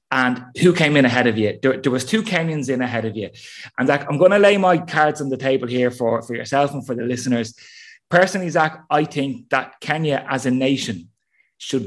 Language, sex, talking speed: English, male, 230 wpm